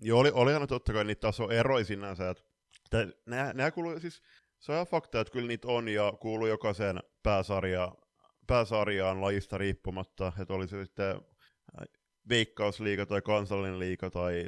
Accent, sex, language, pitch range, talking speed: native, male, Finnish, 95-115 Hz, 135 wpm